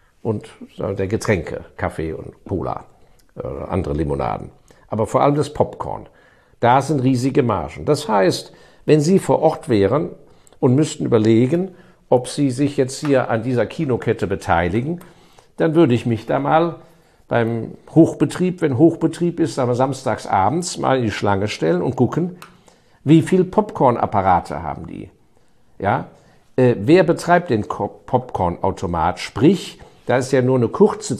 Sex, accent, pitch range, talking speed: male, German, 120-160 Hz, 140 wpm